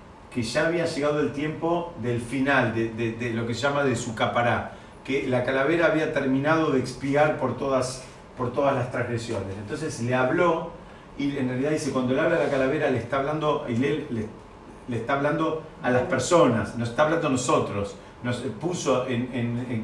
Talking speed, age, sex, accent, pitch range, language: 200 wpm, 40-59, male, Argentinian, 120-145 Hz, Spanish